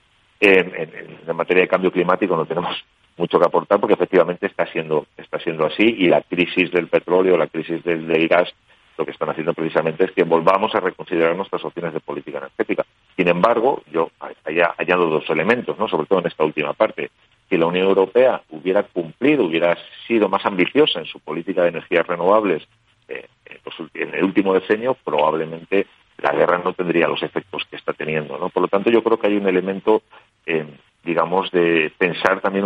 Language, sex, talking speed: Spanish, male, 195 wpm